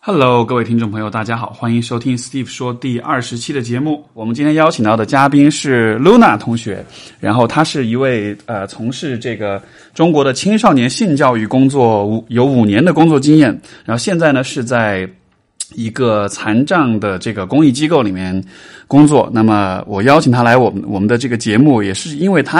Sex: male